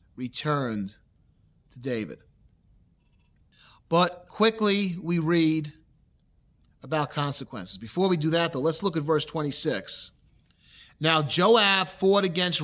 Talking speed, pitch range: 110 wpm, 150-185 Hz